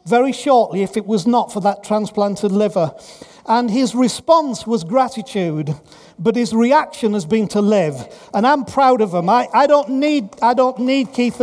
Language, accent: English, British